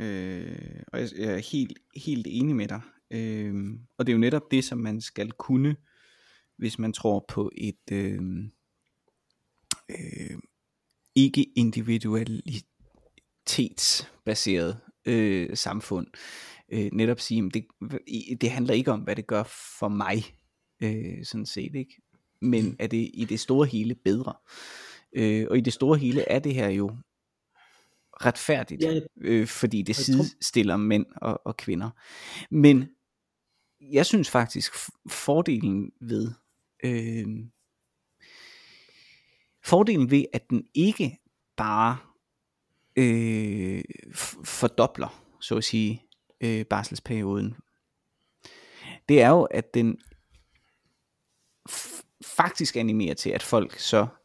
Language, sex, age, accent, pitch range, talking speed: Danish, male, 30-49, native, 105-130 Hz, 120 wpm